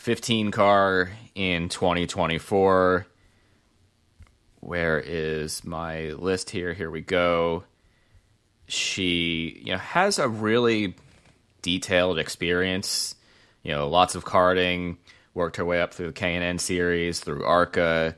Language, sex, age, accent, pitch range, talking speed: English, male, 30-49, American, 85-105 Hz, 115 wpm